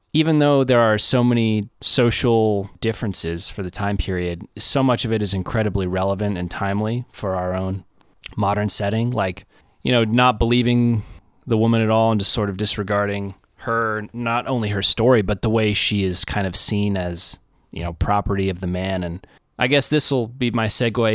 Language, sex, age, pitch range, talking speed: English, male, 20-39, 95-120 Hz, 195 wpm